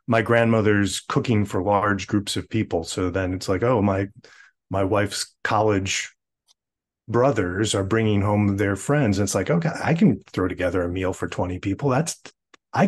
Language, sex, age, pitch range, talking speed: English, male, 30-49, 95-115 Hz, 175 wpm